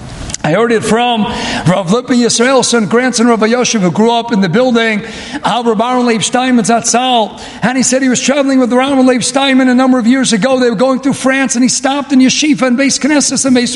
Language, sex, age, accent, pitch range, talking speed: English, male, 50-69, American, 245-290 Hz, 230 wpm